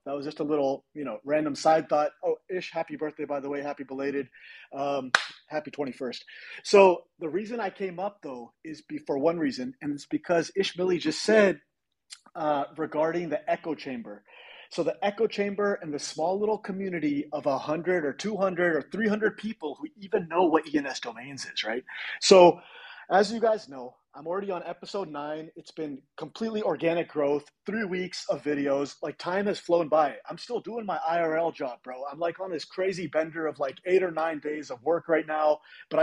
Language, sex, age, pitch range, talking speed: English, male, 30-49, 150-195 Hz, 195 wpm